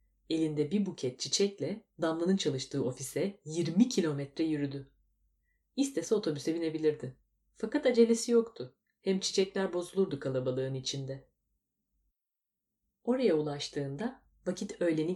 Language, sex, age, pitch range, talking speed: Turkish, female, 30-49, 140-195 Hz, 100 wpm